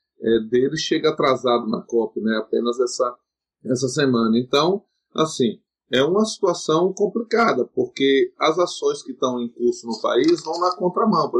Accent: Brazilian